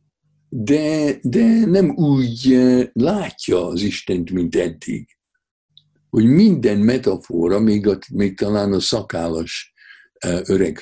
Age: 60-79